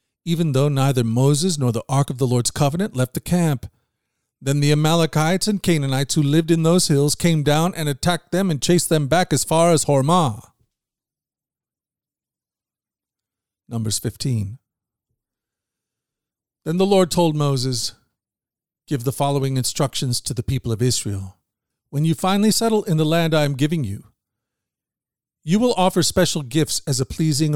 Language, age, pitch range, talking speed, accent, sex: English, 40-59, 130-165 Hz, 155 wpm, American, male